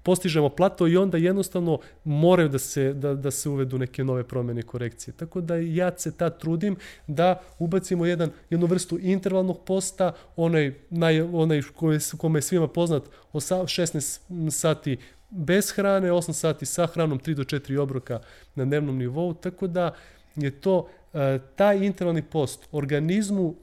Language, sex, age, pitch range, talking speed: Croatian, male, 30-49, 135-175 Hz, 145 wpm